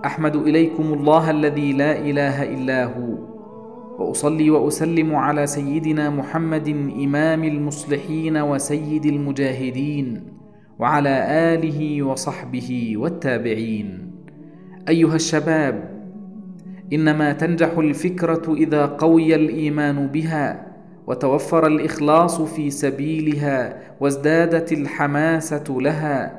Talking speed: 85 wpm